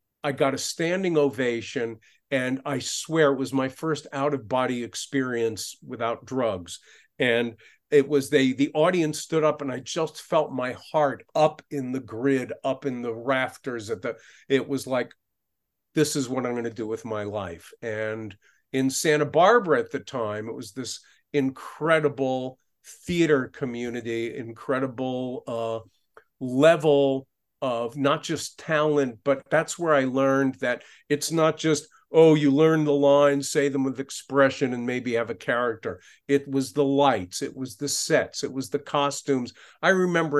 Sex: male